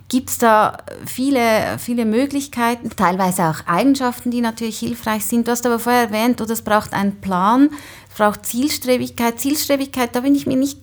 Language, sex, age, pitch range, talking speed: German, female, 30-49, 195-245 Hz, 170 wpm